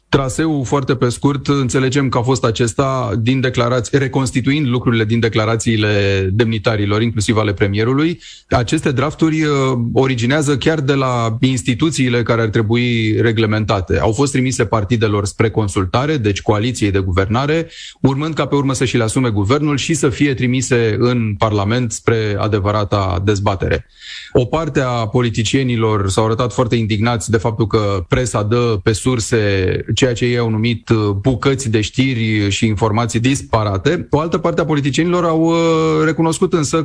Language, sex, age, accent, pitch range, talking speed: Romanian, male, 30-49, native, 110-140 Hz, 150 wpm